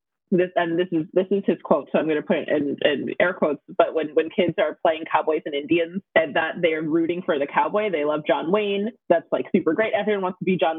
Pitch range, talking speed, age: 160-215 Hz, 260 wpm, 20-39